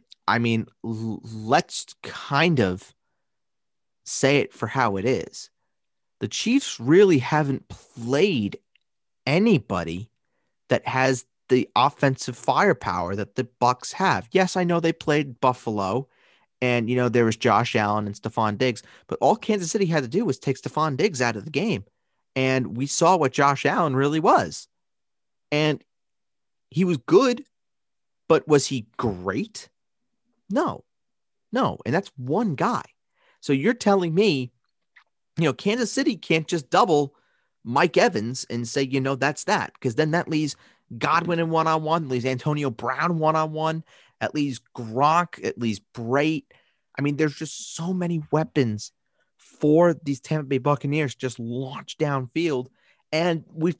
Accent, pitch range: American, 125-165 Hz